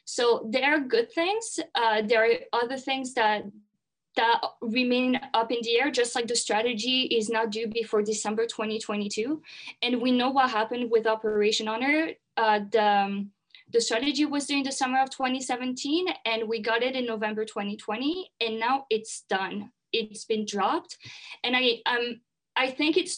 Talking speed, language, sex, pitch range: 170 wpm, English, female, 215-255 Hz